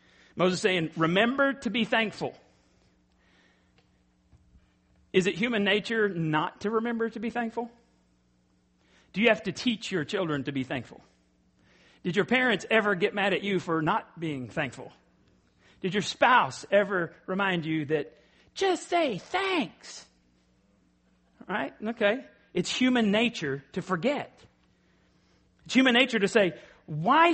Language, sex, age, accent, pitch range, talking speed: English, male, 40-59, American, 160-240 Hz, 135 wpm